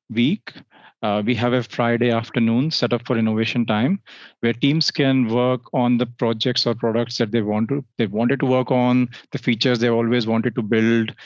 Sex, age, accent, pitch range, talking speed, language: male, 30-49, Indian, 115-130 Hz, 195 wpm, English